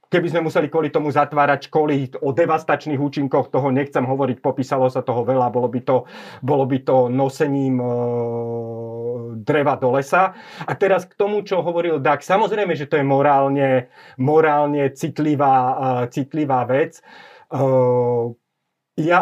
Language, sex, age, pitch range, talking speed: Slovak, male, 30-49, 135-175 Hz, 145 wpm